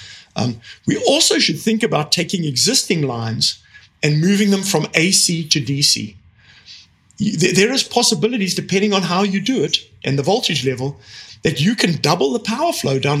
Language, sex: English, male